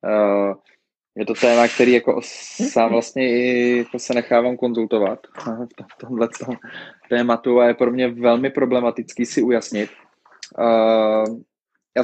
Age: 20-39